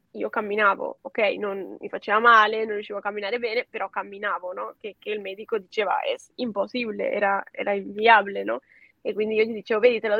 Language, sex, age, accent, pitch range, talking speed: Italian, female, 10-29, native, 210-235 Hz, 200 wpm